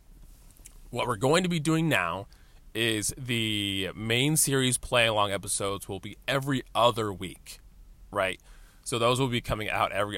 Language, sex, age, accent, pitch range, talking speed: English, male, 20-39, American, 105-140 Hz, 160 wpm